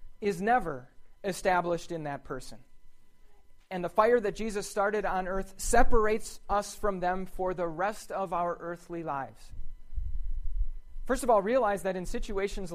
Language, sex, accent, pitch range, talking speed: English, male, American, 175-215 Hz, 150 wpm